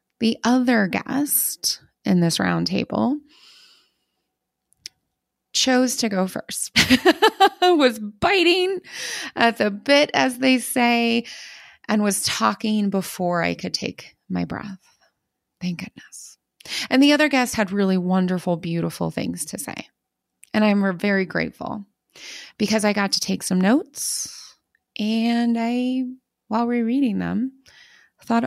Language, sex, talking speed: English, female, 120 wpm